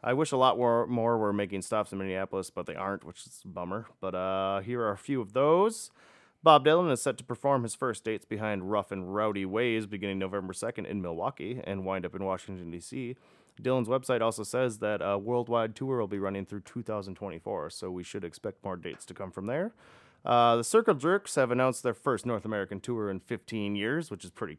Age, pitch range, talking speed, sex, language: 30-49, 100-130 Hz, 220 wpm, male, English